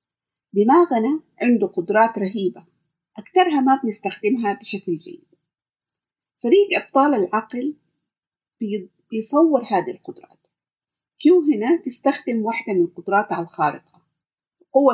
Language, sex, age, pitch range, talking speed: Arabic, female, 50-69, 190-275 Hz, 90 wpm